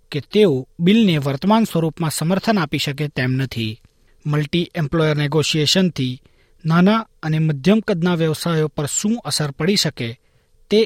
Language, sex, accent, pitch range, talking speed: Gujarati, male, native, 135-185 Hz, 135 wpm